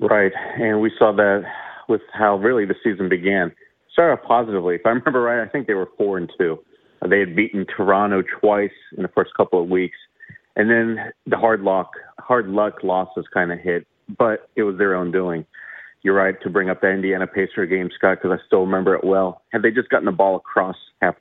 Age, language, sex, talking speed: 40-59, English, male, 220 wpm